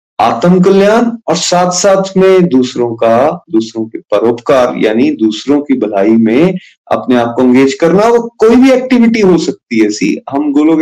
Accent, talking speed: native, 165 wpm